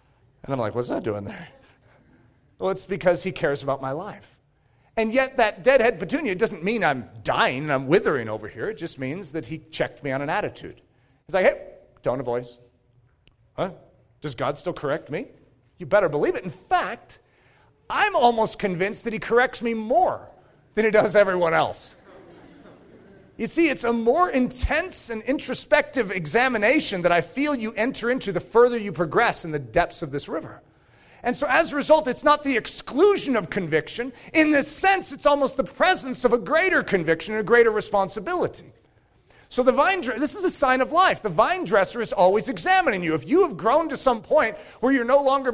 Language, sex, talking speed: English, male, 195 wpm